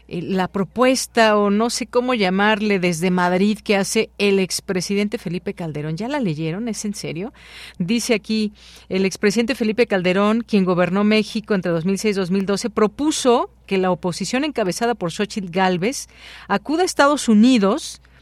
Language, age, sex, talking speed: Spanish, 40-59, female, 150 wpm